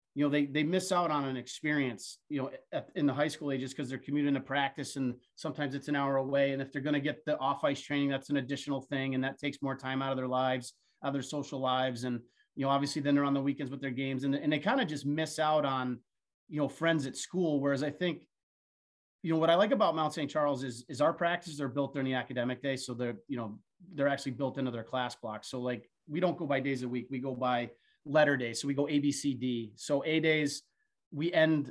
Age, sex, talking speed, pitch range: 30-49, male, 265 wpm, 125-145 Hz